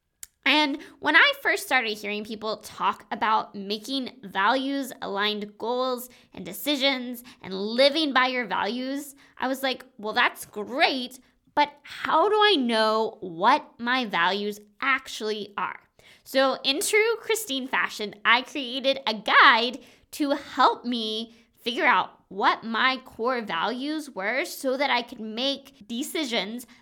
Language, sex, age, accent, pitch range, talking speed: English, female, 20-39, American, 215-275 Hz, 135 wpm